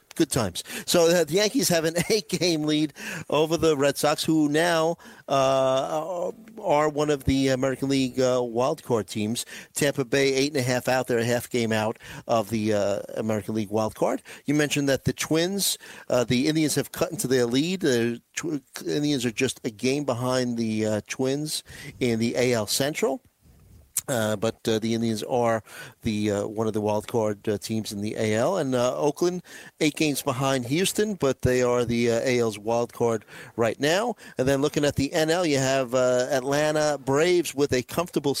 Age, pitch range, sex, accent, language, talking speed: 50-69, 115-145 Hz, male, American, English, 185 wpm